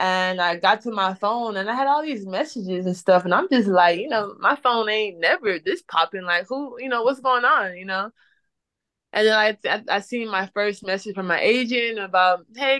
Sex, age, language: female, 20-39, English